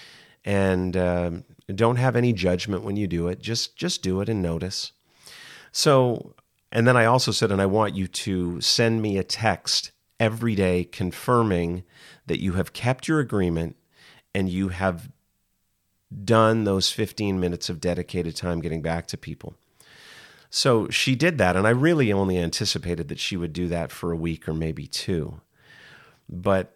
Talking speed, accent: 170 wpm, American